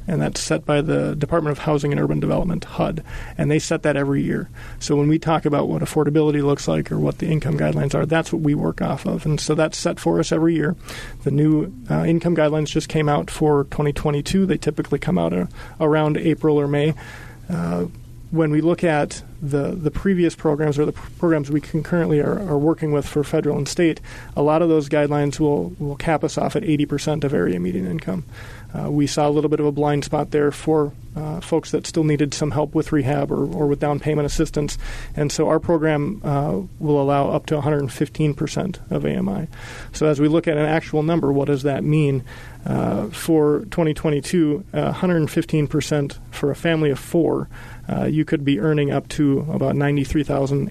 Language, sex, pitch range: English, male, 140-155 Hz